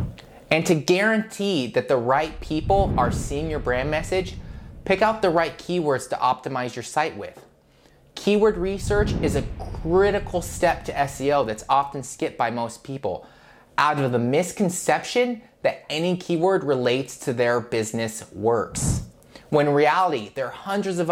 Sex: male